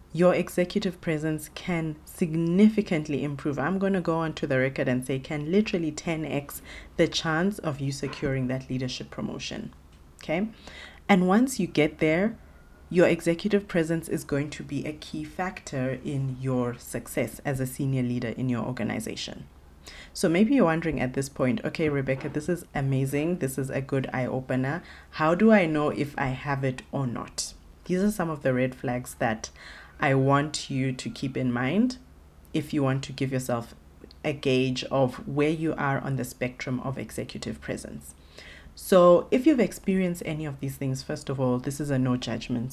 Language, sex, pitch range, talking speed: English, female, 130-160 Hz, 185 wpm